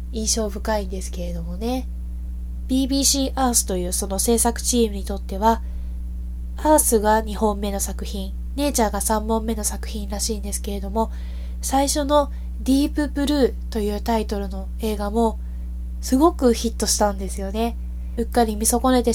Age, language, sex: 20-39, Japanese, female